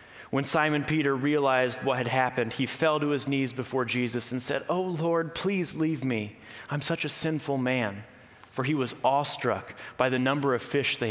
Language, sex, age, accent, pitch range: Japanese, male, 30-49, American, 110-135 Hz